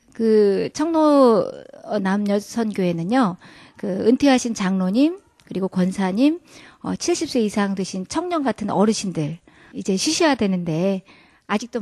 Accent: native